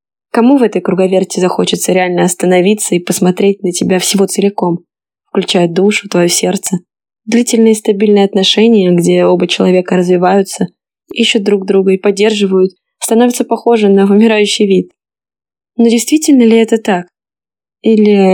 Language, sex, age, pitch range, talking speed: Russian, female, 20-39, 185-215 Hz, 130 wpm